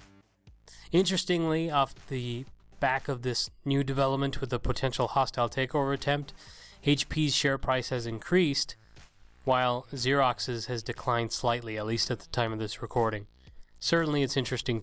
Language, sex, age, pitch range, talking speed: English, male, 20-39, 115-145 Hz, 140 wpm